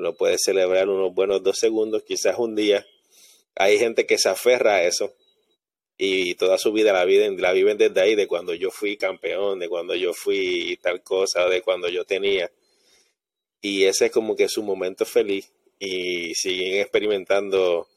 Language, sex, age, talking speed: English, male, 30-49, 175 wpm